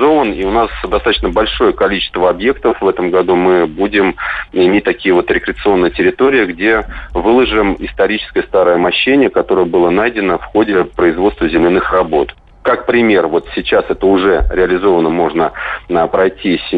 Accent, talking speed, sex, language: native, 140 wpm, male, Russian